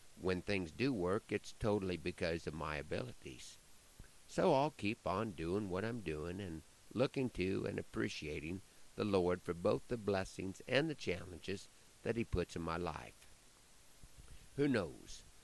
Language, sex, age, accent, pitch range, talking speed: English, male, 50-69, American, 90-115 Hz, 155 wpm